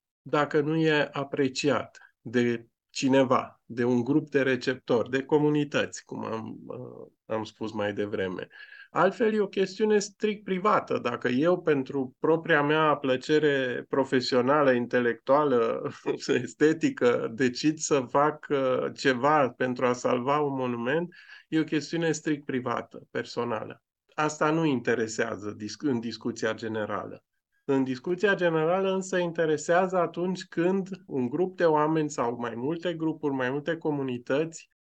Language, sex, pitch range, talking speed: Romanian, male, 130-170 Hz, 125 wpm